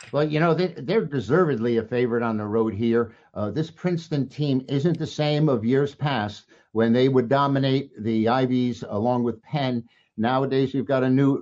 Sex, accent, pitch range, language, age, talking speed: male, American, 115-150 Hz, English, 50-69, 190 wpm